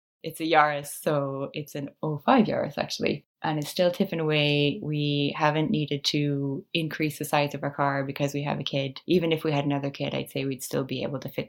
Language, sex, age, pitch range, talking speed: English, female, 20-39, 145-160 Hz, 225 wpm